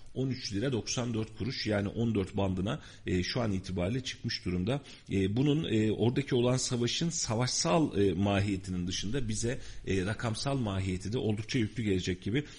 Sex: male